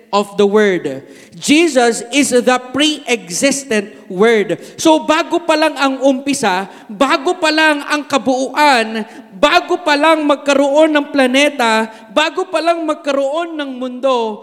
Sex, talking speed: male, 130 wpm